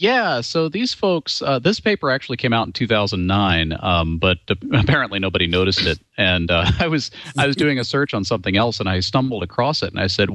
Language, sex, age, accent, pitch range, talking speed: English, male, 40-59, American, 85-105 Hz, 220 wpm